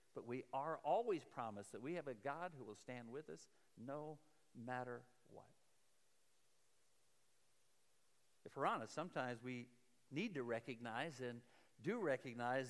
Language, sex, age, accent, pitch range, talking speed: English, male, 50-69, American, 135-200 Hz, 135 wpm